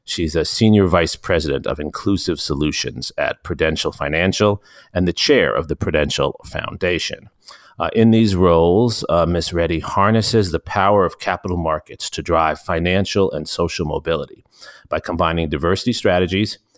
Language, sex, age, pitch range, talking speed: English, male, 40-59, 80-105 Hz, 145 wpm